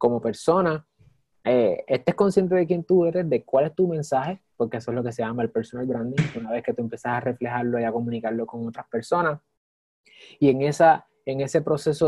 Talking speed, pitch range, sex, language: 215 wpm, 120-160 Hz, male, Spanish